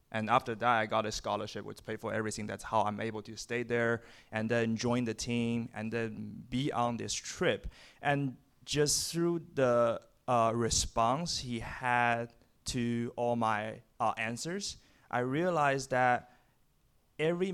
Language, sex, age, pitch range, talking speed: English, male, 20-39, 110-125 Hz, 155 wpm